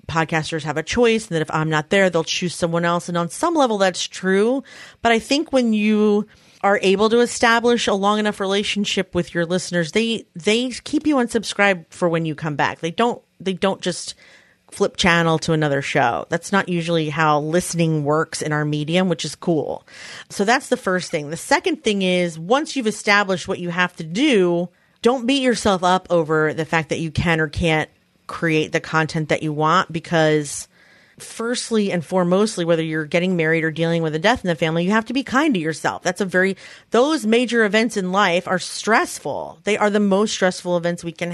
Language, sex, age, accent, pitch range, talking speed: English, female, 30-49, American, 165-210 Hz, 210 wpm